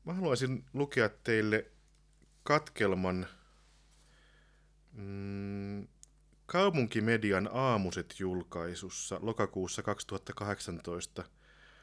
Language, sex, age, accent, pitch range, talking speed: Finnish, male, 30-49, native, 100-130 Hz, 55 wpm